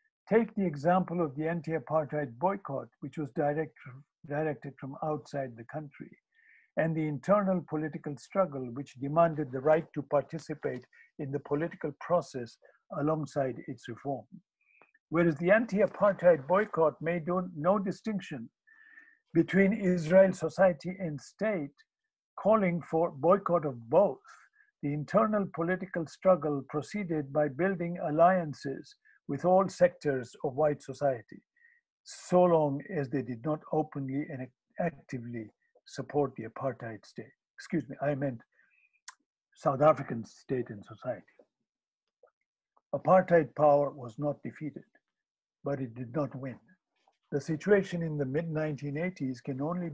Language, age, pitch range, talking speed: English, 60-79, 140-185 Hz, 125 wpm